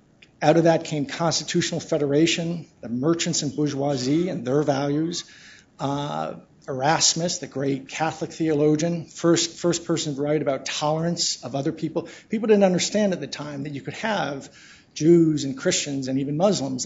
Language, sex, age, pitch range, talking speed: English, male, 50-69, 140-165 Hz, 160 wpm